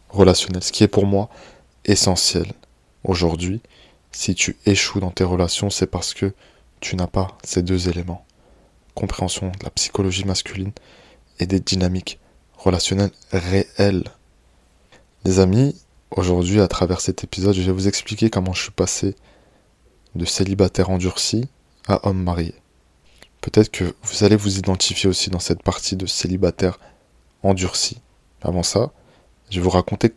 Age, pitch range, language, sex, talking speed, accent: 20-39, 90-100 Hz, French, male, 145 wpm, French